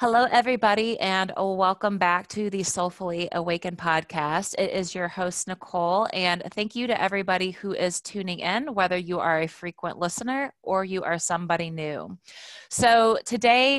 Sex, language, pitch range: female, English, 170-200 Hz